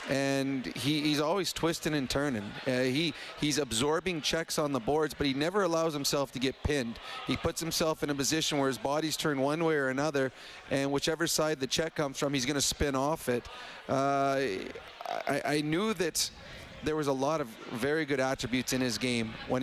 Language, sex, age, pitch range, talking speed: English, male, 30-49, 130-155 Hz, 200 wpm